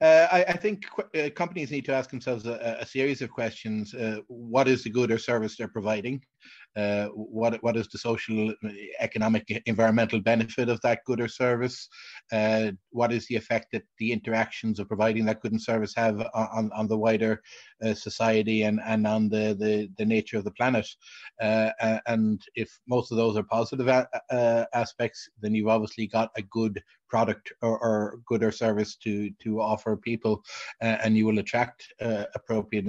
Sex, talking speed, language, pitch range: male, 190 wpm, English, 105-115 Hz